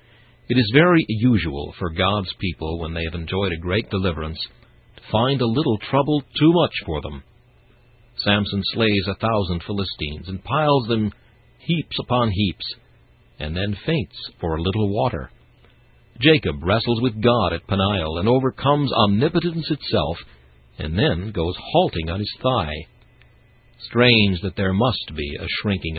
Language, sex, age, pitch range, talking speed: English, male, 60-79, 85-120 Hz, 150 wpm